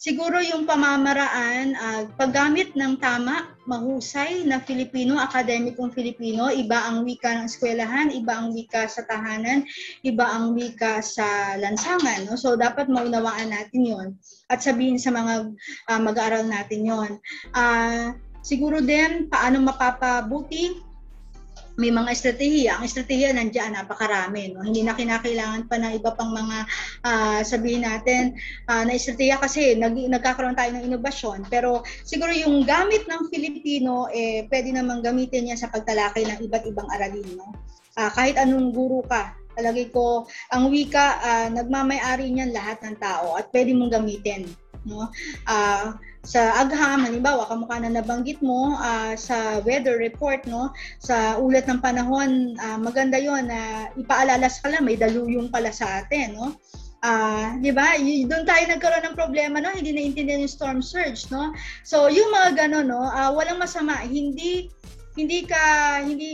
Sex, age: female, 20-39